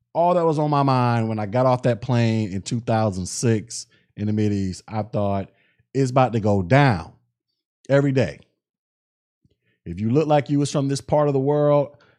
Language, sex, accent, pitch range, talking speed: English, male, American, 105-130 Hz, 185 wpm